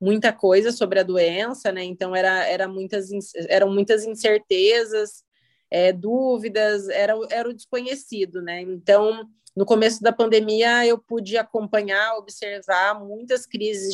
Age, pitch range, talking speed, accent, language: 30-49, 195-235 Hz, 115 wpm, Brazilian, Portuguese